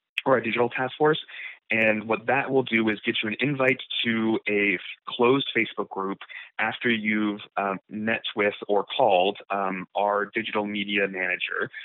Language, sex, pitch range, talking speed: English, male, 100-115 Hz, 160 wpm